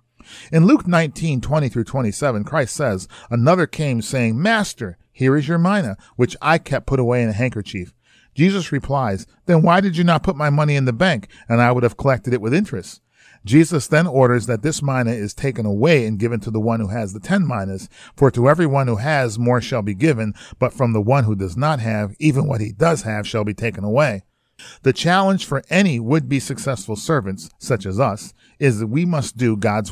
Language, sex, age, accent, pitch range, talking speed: English, male, 40-59, American, 110-150 Hz, 215 wpm